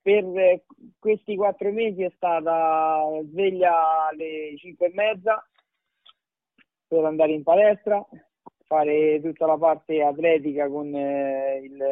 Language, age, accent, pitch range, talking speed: Italian, 30-49, native, 145-180 Hz, 110 wpm